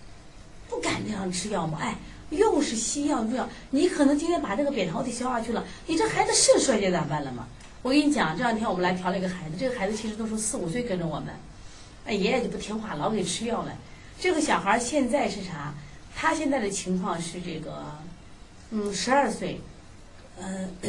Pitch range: 165-230 Hz